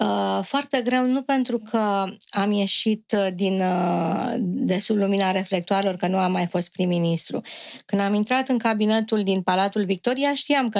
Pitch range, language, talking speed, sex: 195-245 Hz, Romanian, 155 wpm, female